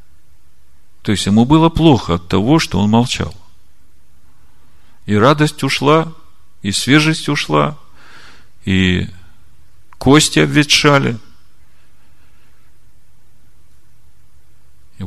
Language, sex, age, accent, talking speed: Russian, male, 40-59, native, 80 wpm